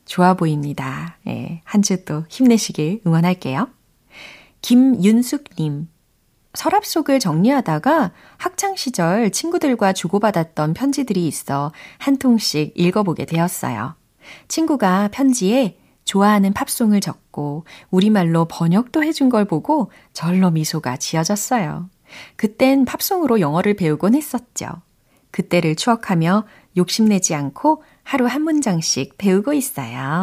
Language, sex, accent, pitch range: Korean, female, native, 160-235 Hz